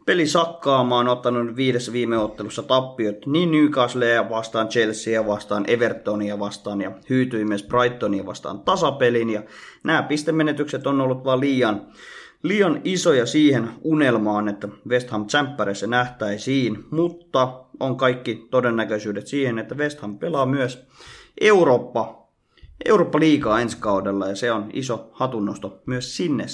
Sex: male